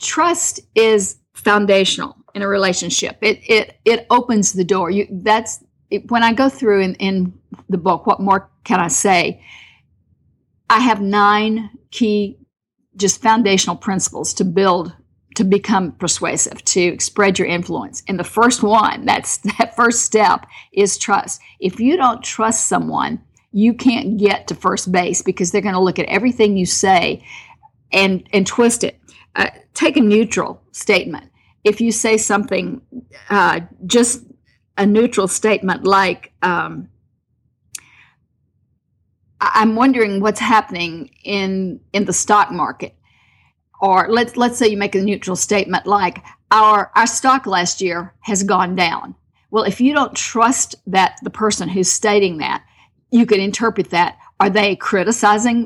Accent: American